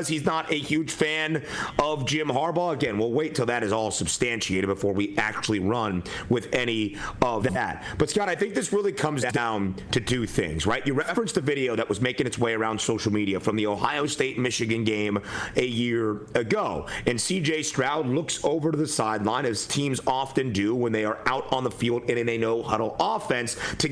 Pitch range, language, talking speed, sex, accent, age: 115-155 Hz, English, 205 wpm, male, American, 30-49